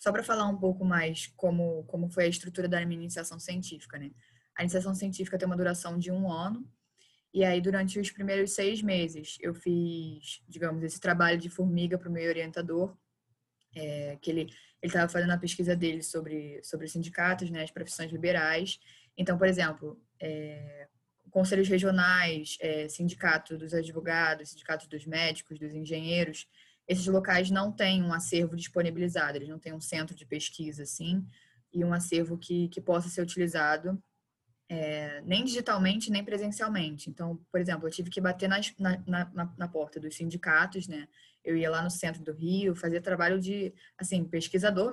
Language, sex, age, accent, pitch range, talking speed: Portuguese, female, 10-29, Brazilian, 160-185 Hz, 170 wpm